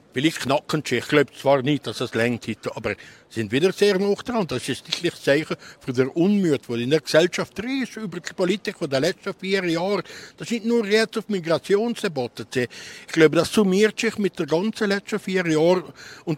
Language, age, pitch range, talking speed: German, 60-79, 135-195 Hz, 205 wpm